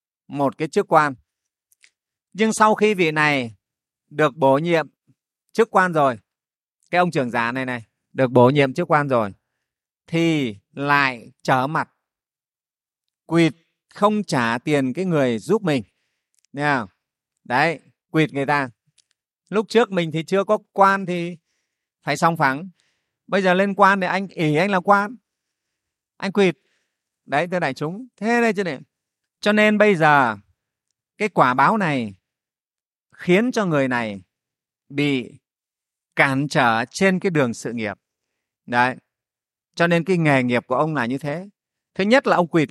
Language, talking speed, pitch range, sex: Vietnamese, 155 wpm, 135-195 Hz, male